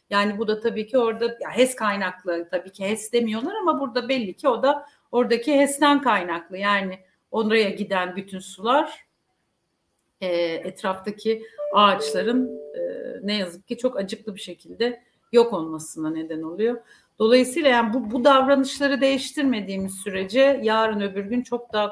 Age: 60-79